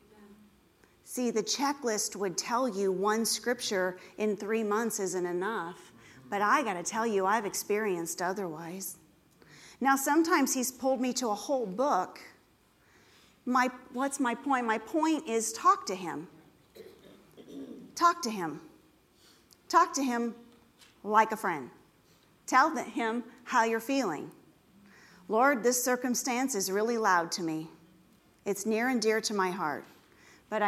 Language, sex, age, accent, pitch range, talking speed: English, female, 40-59, American, 185-245 Hz, 140 wpm